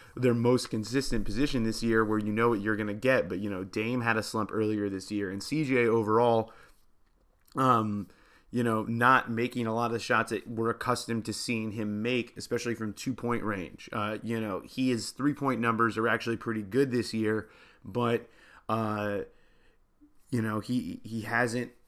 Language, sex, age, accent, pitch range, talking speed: English, male, 30-49, American, 110-120 Hz, 185 wpm